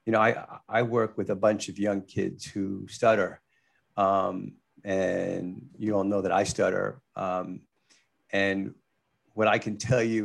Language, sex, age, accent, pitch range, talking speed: English, male, 50-69, American, 95-110 Hz, 165 wpm